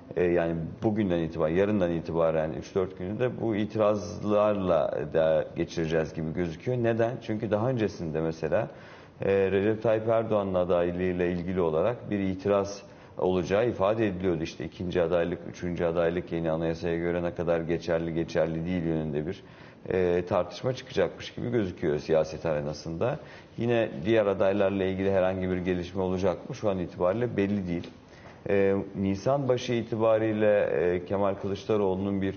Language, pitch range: Turkish, 85-100 Hz